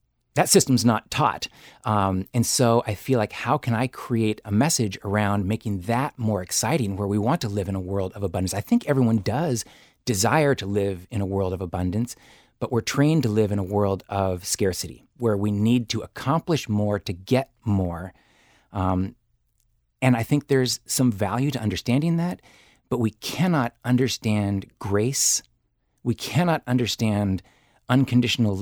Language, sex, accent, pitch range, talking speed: English, male, American, 100-125 Hz, 170 wpm